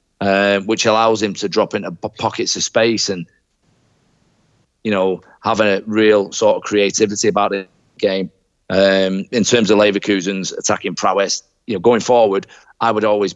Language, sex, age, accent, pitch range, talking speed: English, male, 40-59, British, 95-110 Hz, 160 wpm